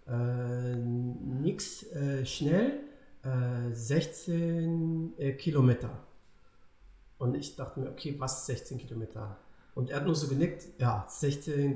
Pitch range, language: 130-175 Hz, German